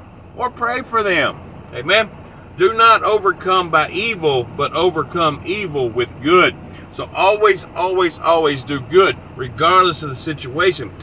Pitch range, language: 125-185 Hz, English